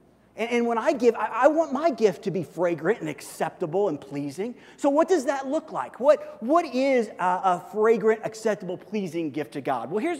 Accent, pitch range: American, 195-265 Hz